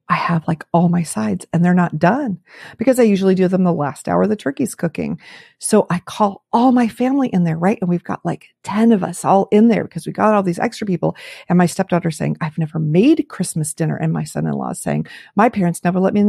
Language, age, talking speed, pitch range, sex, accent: English, 40-59, 245 wpm, 175-240 Hz, female, American